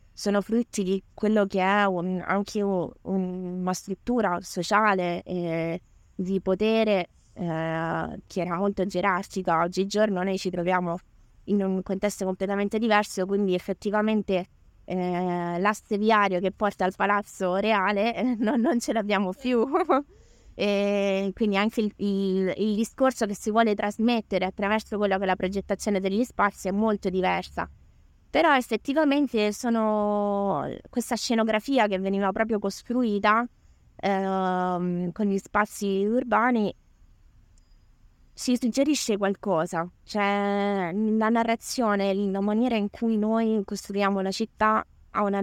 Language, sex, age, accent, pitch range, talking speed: Italian, female, 20-39, native, 185-215 Hz, 125 wpm